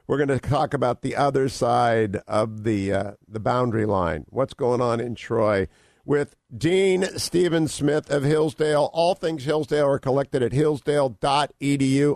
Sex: male